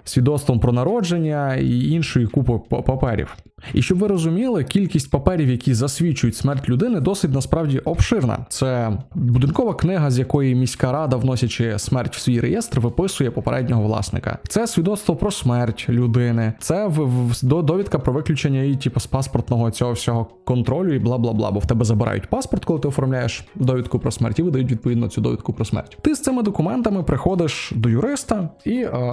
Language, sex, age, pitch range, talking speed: Ukrainian, male, 20-39, 120-155 Hz, 165 wpm